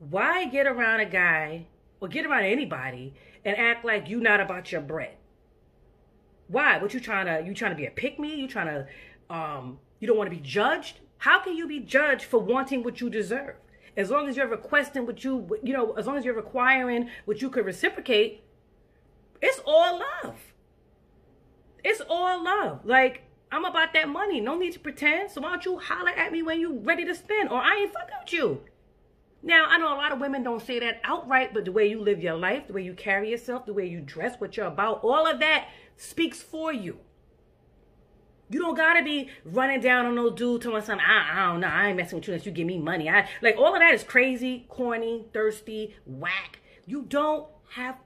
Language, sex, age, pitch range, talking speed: English, female, 30-49, 200-300 Hz, 220 wpm